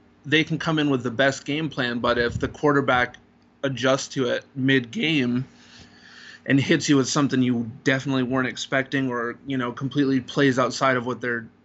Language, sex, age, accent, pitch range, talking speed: English, male, 20-39, American, 120-140 Hz, 180 wpm